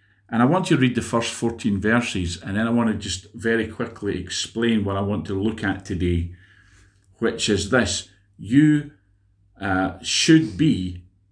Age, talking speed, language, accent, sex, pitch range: 40-59, 175 wpm, English, British, male, 95-115 Hz